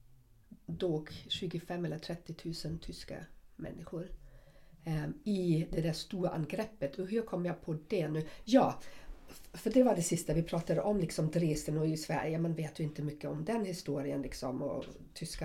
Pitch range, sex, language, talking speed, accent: 165-225 Hz, female, Swedish, 180 wpm, native